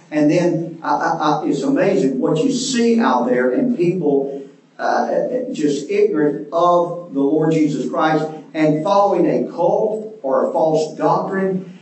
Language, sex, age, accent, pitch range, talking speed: English, male, 40-59, American, 150-195 Hz, 150 wpm